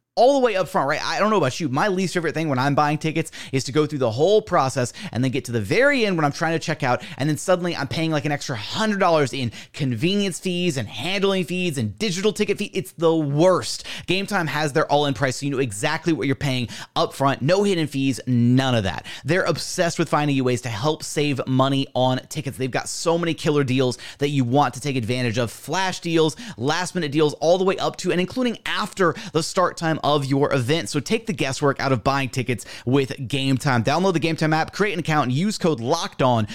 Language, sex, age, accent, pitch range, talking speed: English, male, 30-49, American, 130-175 Hz, 240 wpm